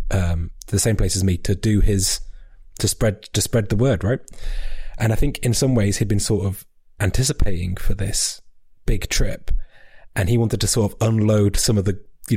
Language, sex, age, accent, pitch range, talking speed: English, male, 20-39, British, 100-130 Hz, 205 wpm